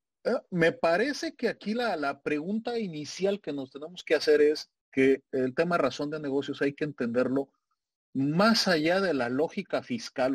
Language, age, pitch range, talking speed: Spanish, 40-59, 120-150 Hz, 170 wpm